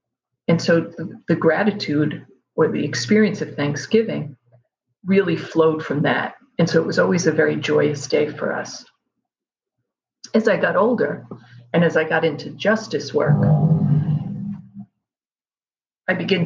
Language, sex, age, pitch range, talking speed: English, female, 50-69, 150-180 Hz, 140 wpm